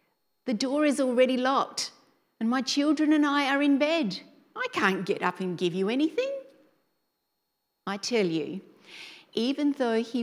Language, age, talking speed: English, 50-69, 160 wpm